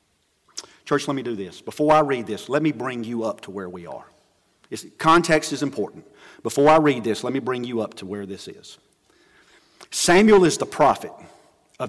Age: 40-59